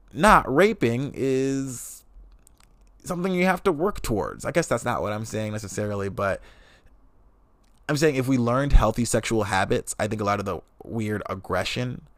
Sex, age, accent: male, 20-39, American